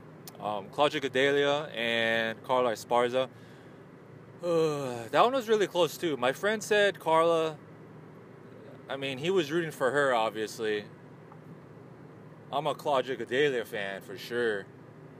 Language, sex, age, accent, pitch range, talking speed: English, male, 20-39, American, 125-160 Hz, 125 wpm